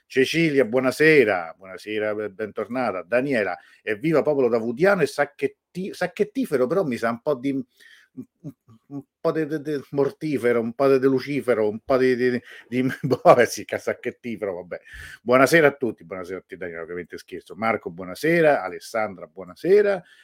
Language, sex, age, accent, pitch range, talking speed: Italian, male, 50-69, native, 100-140 Hz, 140 wpm